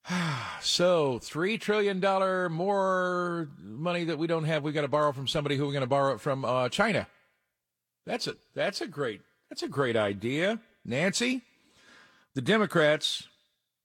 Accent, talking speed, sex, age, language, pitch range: American, 160 wpm, male, 50-69, English, 110-155 Hz